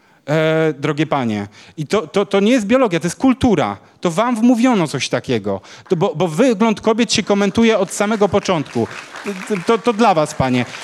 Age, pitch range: 30-49, 150-190 Hz